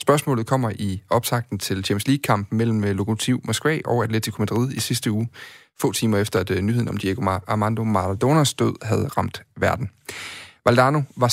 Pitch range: 110-130 Hz